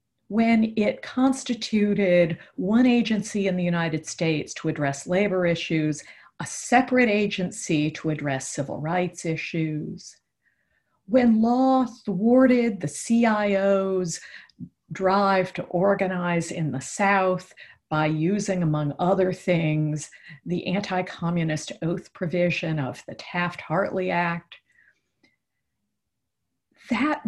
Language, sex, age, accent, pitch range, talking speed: English, female, 50-69, American, 165-230 Hz, 100 wpm